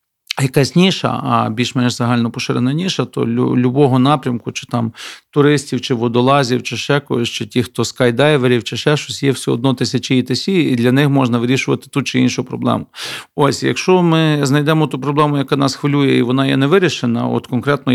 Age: 40-59